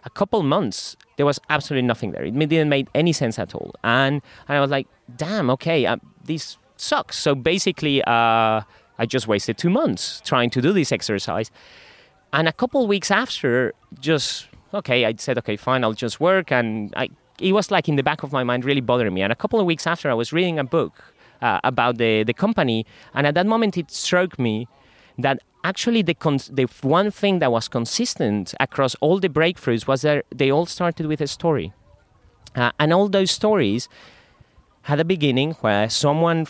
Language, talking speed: English, 195 wpm